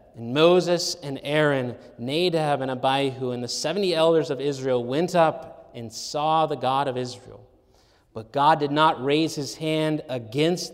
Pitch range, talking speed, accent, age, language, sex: 125-160 Hz, 160 wpm, American, 30-49, English, male